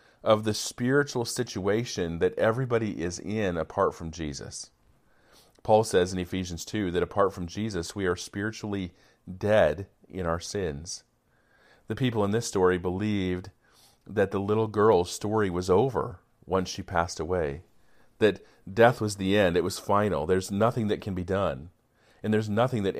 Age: 40-59